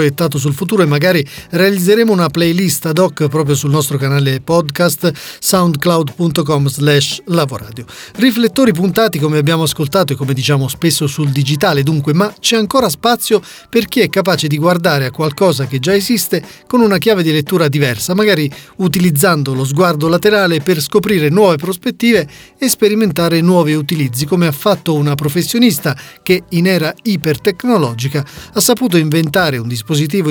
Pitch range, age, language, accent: 150-205 Hz, 40-59, Italian, native